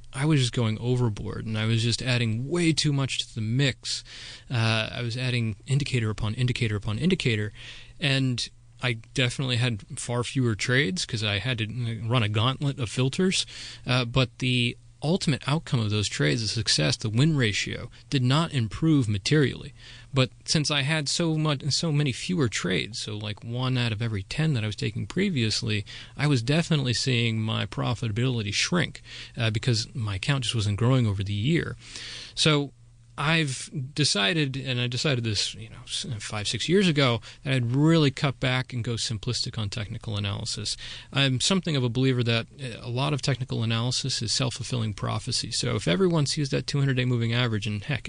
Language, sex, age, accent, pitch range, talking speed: English, male, 30-49, American, 115-135 Hz, 180 wpm